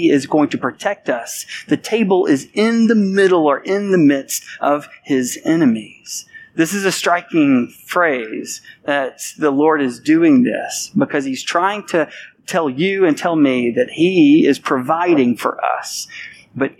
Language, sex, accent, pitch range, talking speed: English, male, American, 155-220 Hz, 160 wpm